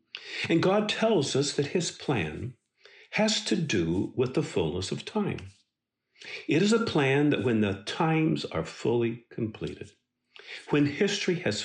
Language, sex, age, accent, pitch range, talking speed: English, male, 50-69, American, 100-155 Hz, 150 wpm